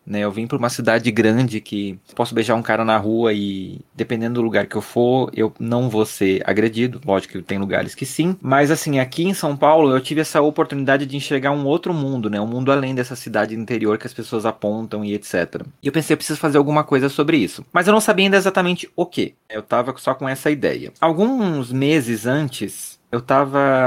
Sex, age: male, 20-39